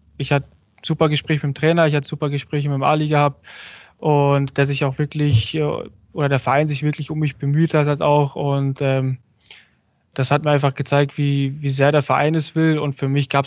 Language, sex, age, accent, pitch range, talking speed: German, male, 20-39, German, 135-145 Hz, 220 wpm